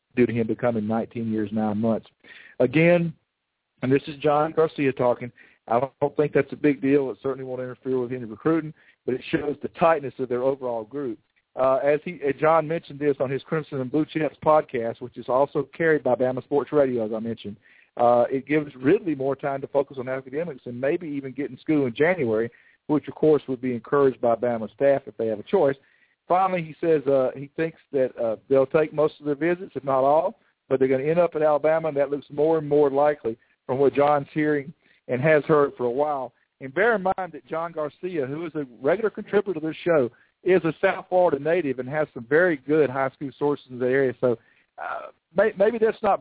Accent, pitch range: American, 125-155 Hz